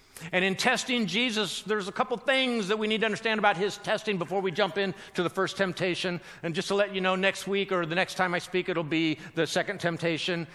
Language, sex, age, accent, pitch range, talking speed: English, male, 50-69, American, 170-225 Hz, 245 wpm